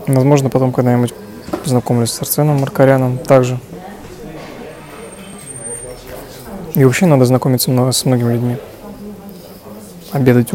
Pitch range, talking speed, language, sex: 125-150 Hz, 90 wpm, Russian, male